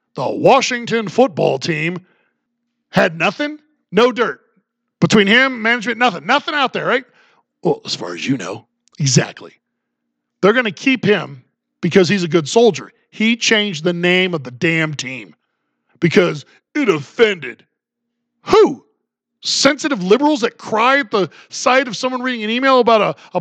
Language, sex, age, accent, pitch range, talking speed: English, male, 40-59, American, 185-255 Hz, 155 wpm